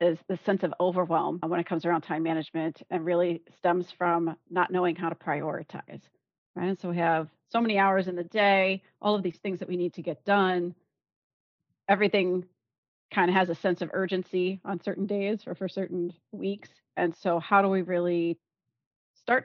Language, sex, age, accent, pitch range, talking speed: English, female, 30-49, American, 170-190 Hz, 195 wpm